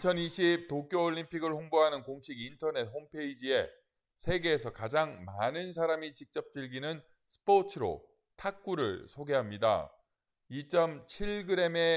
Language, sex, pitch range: Korean, male, 135-170 Hz